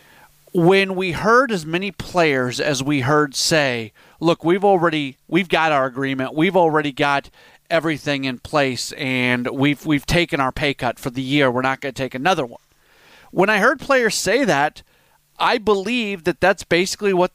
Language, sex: English, male